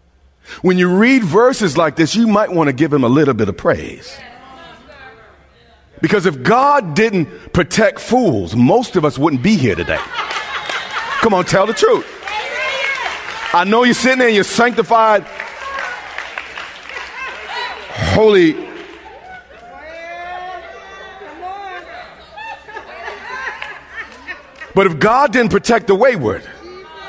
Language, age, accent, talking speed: English, 40-59, American, 115 wpm